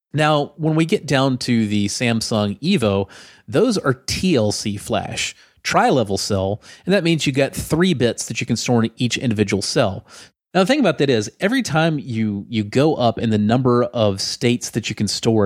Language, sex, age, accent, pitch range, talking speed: English, male, 30-49, American, 105-130 Hz, 200 wpm